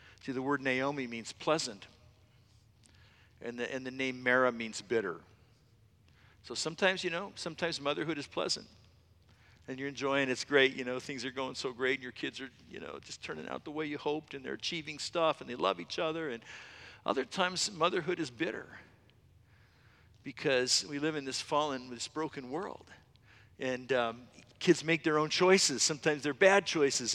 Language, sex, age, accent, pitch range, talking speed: English, male, 50-69, American, 130-175 Hz, 185 wpm